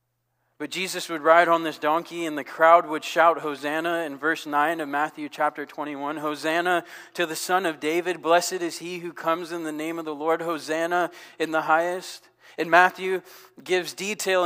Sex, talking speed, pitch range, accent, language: male, 185 wpm, 145-180 Hz, American, English